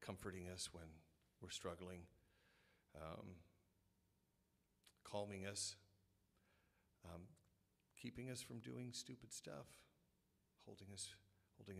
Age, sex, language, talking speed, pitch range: 40-59, male, English, 90 wpm, 85-95 Hz